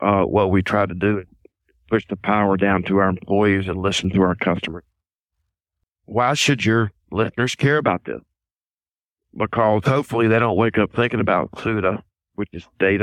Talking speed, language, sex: 175 wpm, English, male